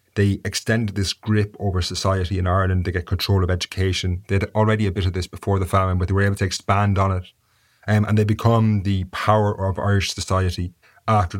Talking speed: 215 wpm